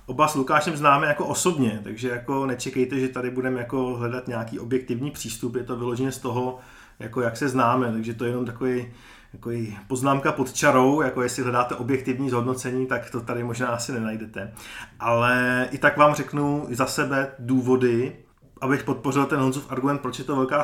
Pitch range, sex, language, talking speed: 125-150 Hz, male, Czech, 180 wpm